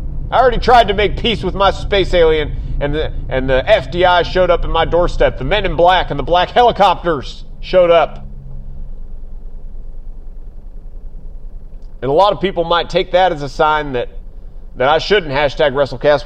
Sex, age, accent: male, 30-49, American